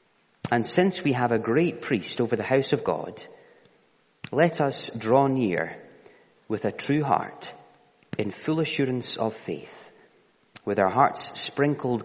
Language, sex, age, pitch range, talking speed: English, male, 30-49, 100-145 Hz, 145 wpm